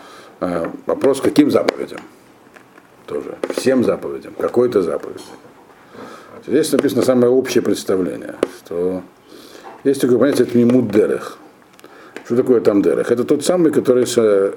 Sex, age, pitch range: male, 50-69, 105-150 Hz